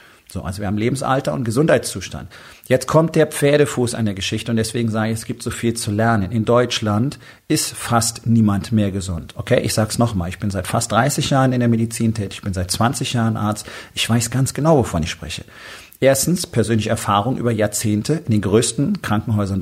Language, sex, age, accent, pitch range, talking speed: German, male, 40-59, German, 105-130 Hz, 210 wpm